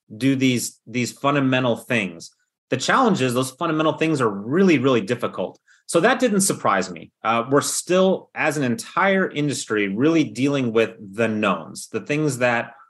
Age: 30-49